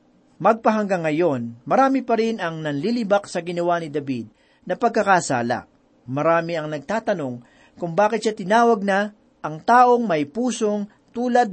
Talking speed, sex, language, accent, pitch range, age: 135 wpm, male, Filipino, native, 165-230 Hz, 40-59